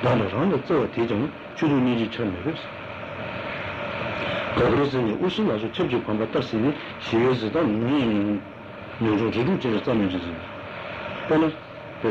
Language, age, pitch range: Italian, 60-79, 110-135 Hz